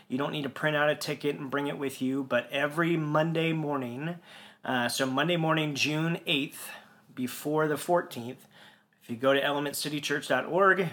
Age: 30-49